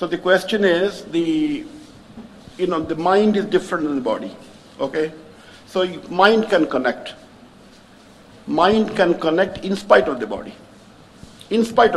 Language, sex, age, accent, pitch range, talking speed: English, male, 60-79, Indian, 165-225 Hz, 150 wpm